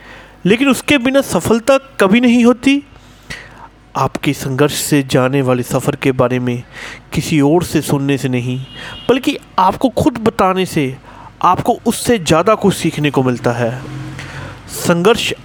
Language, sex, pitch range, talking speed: Hindi, male, 125-180 Hz, 140 wpm